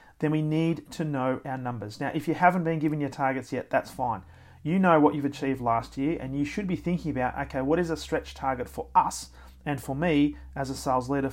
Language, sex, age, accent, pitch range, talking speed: English, male, 40-59, Australian, 130-155 Hz, 245 wpm